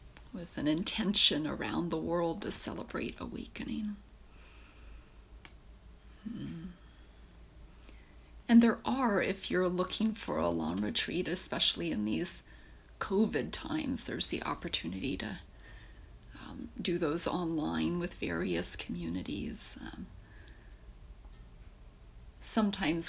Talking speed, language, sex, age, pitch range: 100 wpm, English, female, 30-49, 155-220 Hz